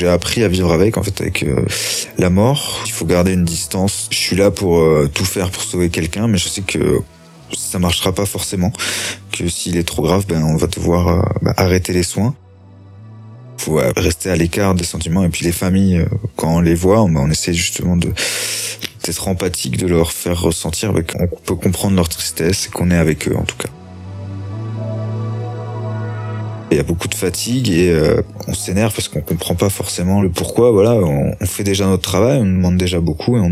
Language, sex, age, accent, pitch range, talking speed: French, male, 20-39, French, 85-100 Hz, 215 wpm